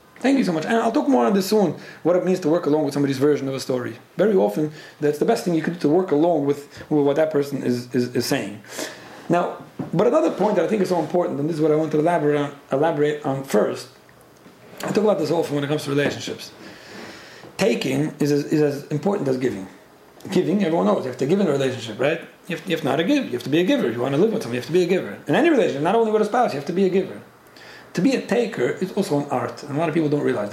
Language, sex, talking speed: English, male, 295 wpm